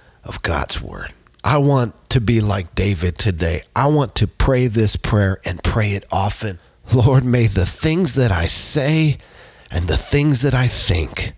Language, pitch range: English, 85-115 Hz